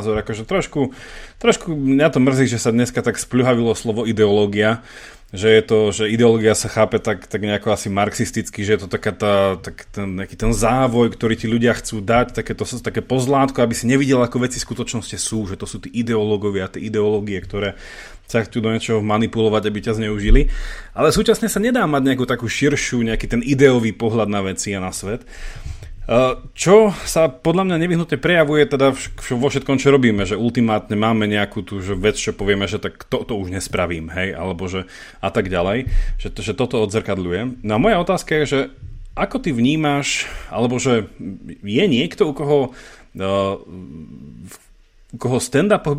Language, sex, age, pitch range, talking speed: Slovak, male, 30-49, 105-135 Hz, 180 wpm